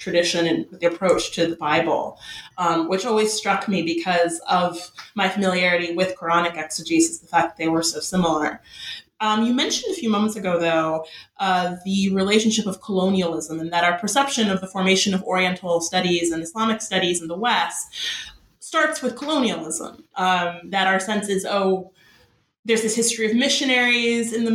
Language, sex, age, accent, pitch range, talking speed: English, female, 30-49, American, 180-230 Hz, 175 wpm